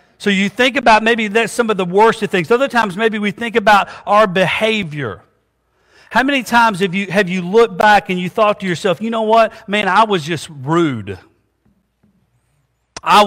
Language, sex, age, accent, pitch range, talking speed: English, male, 40-59, American, 170-225 Hz, 195 wpm